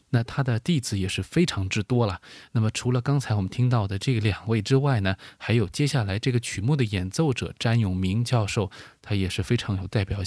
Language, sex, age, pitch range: Chinese, male, 20-39, 100-135 Hz